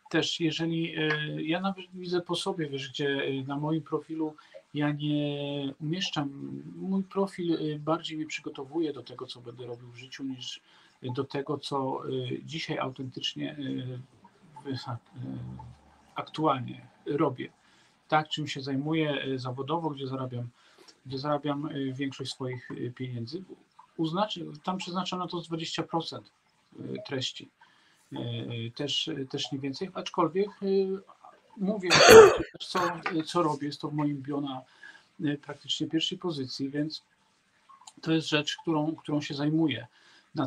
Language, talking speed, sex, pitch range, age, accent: Polish, 115 wpm, male, 135-165 Hz, 50-69, native